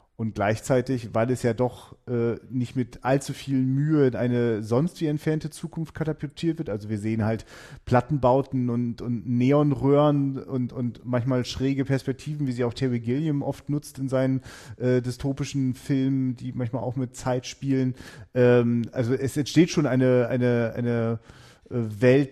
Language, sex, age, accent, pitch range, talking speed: German, male, 40-59, German, 120-135 Hz, 160 wpm